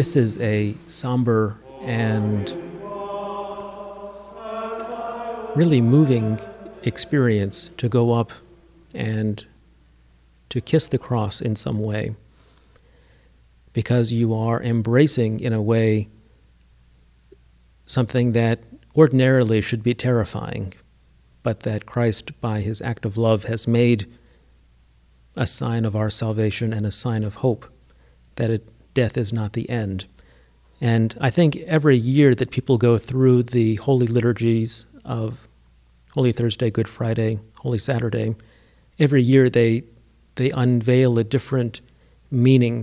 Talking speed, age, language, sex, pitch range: 120 wpm, 50-69, English, male, 105-125 Hz